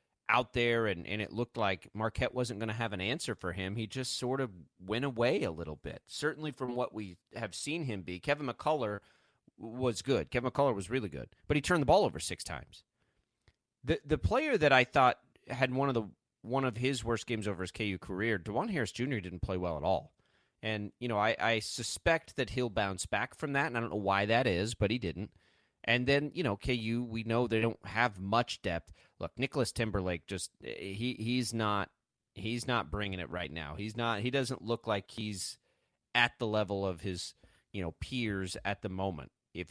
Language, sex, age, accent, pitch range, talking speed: English, male, 30-49, American, 100-125 Hz, 215 wpm